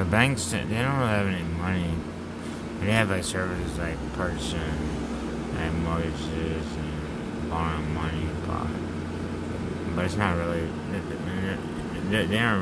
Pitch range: 75-95 Hz